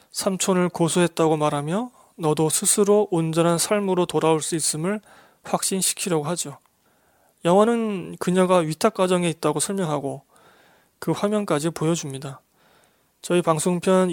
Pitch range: 155-200 Hz